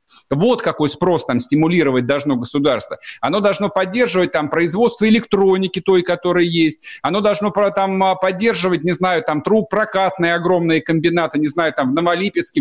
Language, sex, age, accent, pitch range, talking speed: Russian, male, 50-69, native, 180-245 Hz, 150 wpm